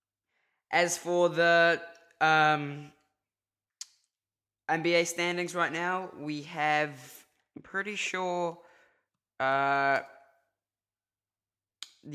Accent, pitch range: British, 135-155 Hz